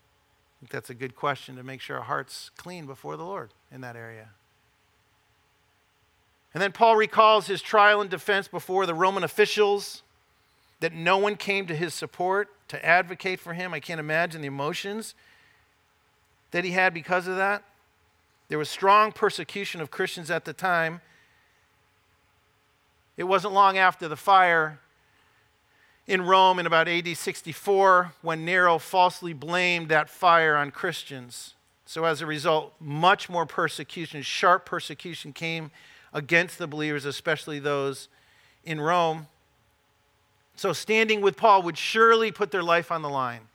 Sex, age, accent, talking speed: male, 50-69, American, 150 wpm